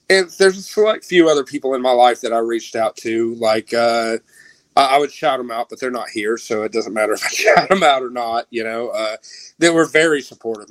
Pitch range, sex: 120-140 Hz, male